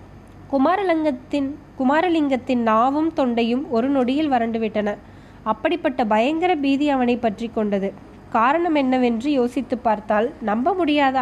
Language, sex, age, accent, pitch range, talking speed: Tamil, female, 20-39, native, 230-285 Hz, 100 wpm